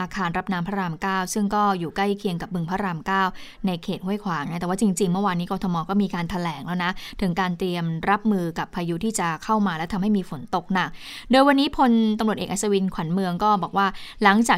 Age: 20-39